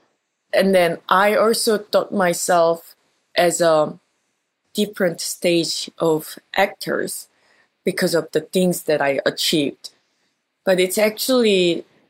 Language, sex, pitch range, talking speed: English, female, 150-190 Hz, 110 wpm